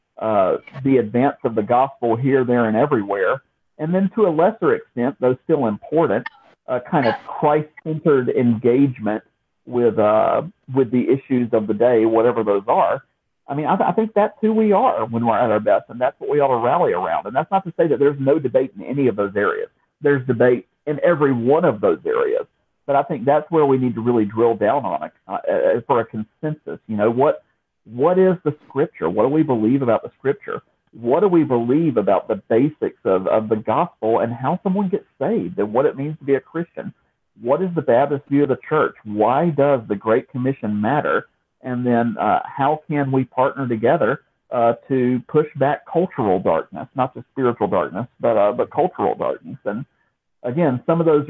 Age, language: 50-69, English